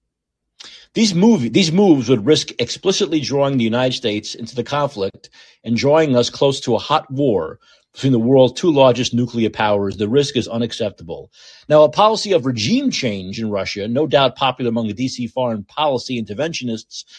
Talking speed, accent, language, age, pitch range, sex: 170 wpm, American, English, 40-59, 120-160 Hz, male